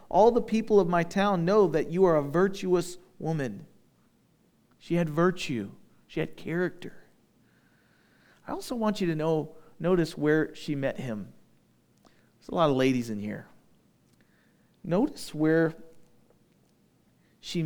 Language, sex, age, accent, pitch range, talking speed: English, male, 40-59, American, 125-170 Hz, 135 wpm